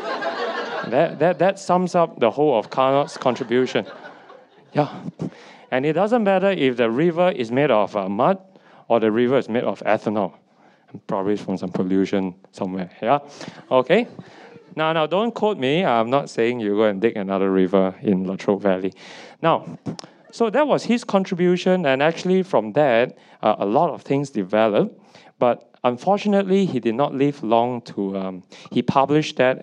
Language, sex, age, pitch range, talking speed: English, male, 20-39, 110-170 Hz, 165 wpm